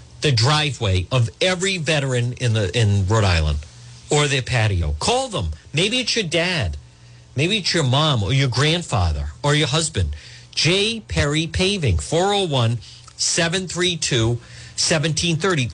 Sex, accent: male, American